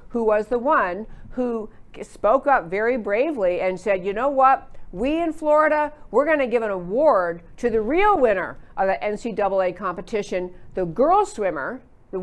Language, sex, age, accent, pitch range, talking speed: English, female, 50-69, American, 185-250 Hz, 165 wpm